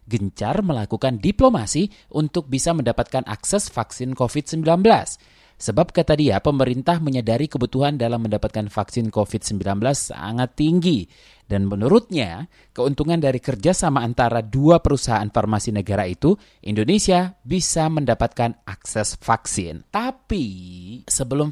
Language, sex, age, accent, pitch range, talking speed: Indonesian, male, 30-49, native, 115-160 Hz, 110 wpm